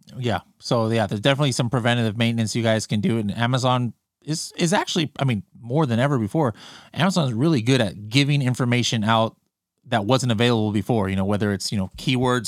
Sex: male